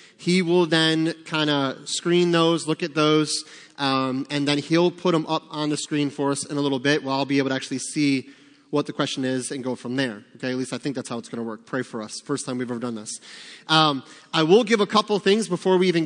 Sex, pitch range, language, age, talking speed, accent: male, 145-185 Hz, English, 30-49, 265 wpm, American